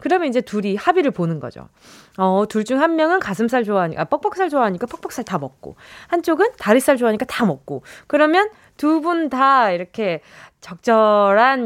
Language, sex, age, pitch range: Korean, female, 20-39, 210-340 Hz